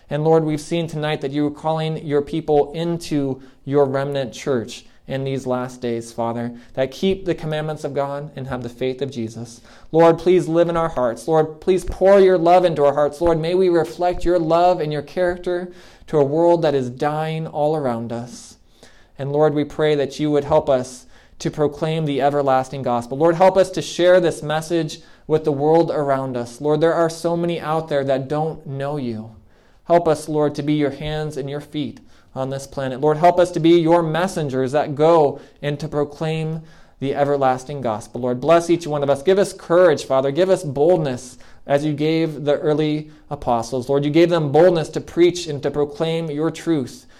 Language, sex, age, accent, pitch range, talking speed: English, male, 20-39, American, 130-160 Hz, 205 wpm